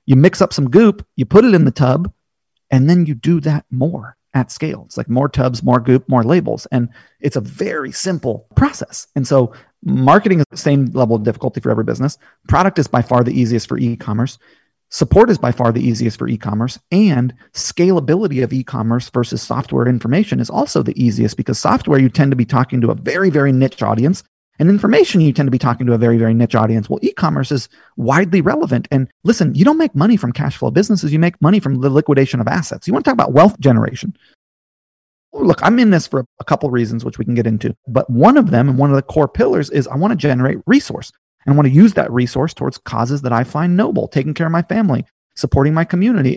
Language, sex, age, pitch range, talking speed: English, male, 40-59, 125-165 Hz, 235 wpm